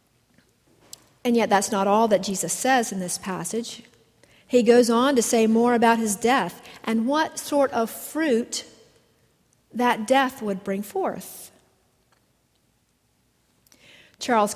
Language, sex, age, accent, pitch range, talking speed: English, female, 50-69, American, 195-245 Hz, 130 wpm